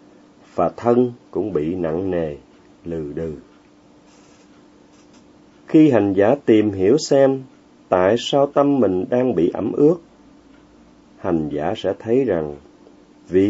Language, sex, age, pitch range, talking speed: Vietnamese, male, 30-49, 100-140 Hz, 125 wpm